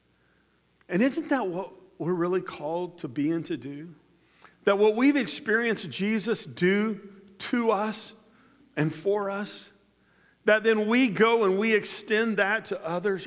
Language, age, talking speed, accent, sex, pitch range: English, 50-69, 150 wpm, American, male, 175-225 Hz